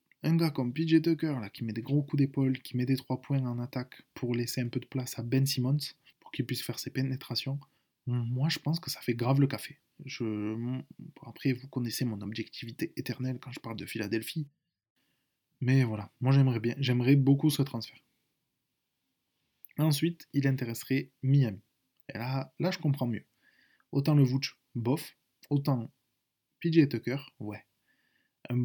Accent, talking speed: French, 175 wpm